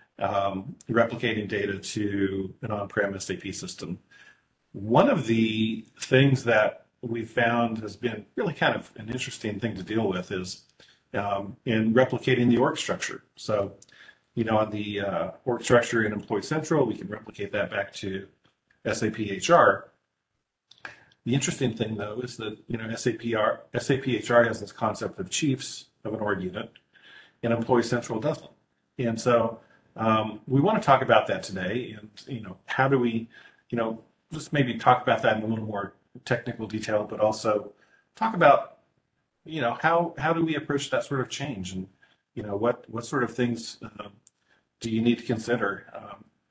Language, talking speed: English, 175 wpm